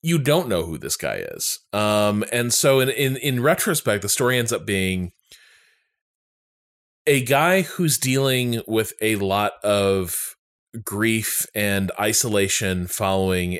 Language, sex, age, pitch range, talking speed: English, male, 20-39, 95-120 Hz, 135 wpm